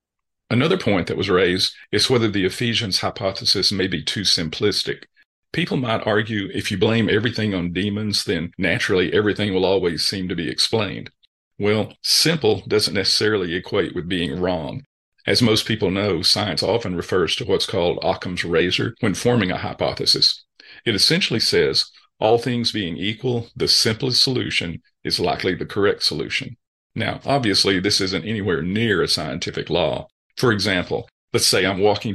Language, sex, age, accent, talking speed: English, male, 50-69, American, 160 wpm